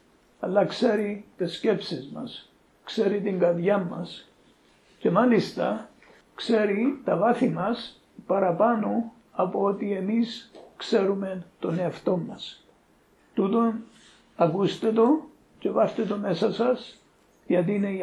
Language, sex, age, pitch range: Greek, male, 60-79, 190-225 Hz